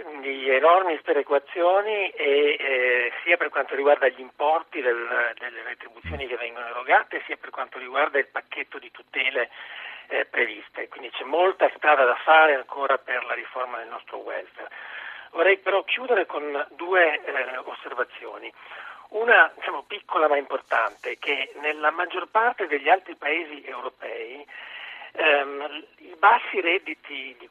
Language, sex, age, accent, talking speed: Italian, male, 40-59, native, 135 wpm